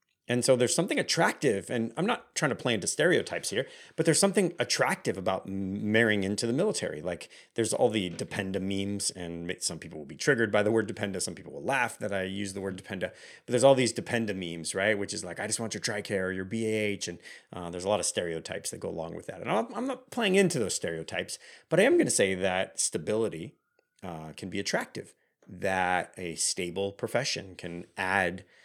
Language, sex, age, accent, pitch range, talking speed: English, male, 30-49, American, 90-115 Hz, 220 wpm